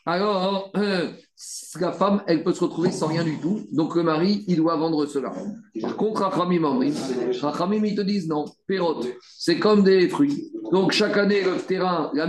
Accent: French